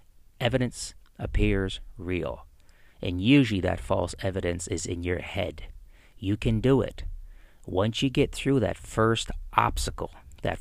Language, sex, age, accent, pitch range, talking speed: English, male, 40-59, American, 85-120 Hz, 135 wpm